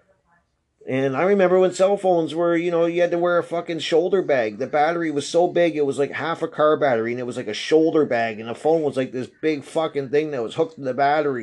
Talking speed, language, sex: 270 wpm, English, male